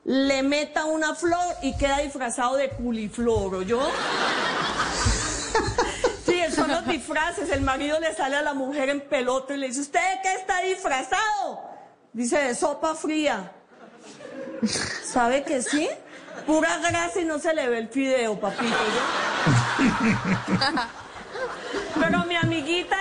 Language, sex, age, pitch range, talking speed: English, female, 40-59, 255-330 Hz, 135 wpm